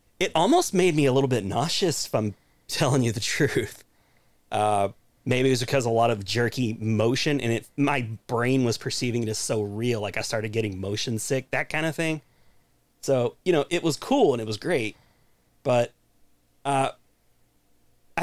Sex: male